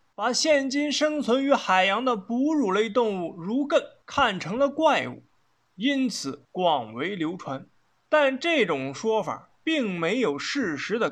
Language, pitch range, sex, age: Chinese, 195-275 Hz, male, 20-39